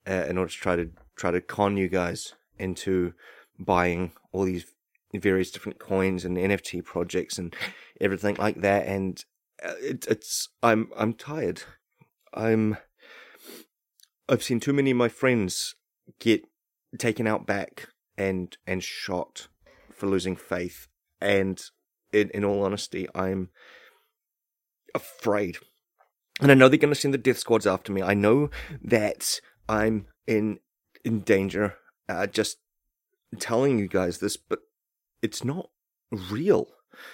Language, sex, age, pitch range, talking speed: English, male, 30-49, 95-130 Hz, 135 wpm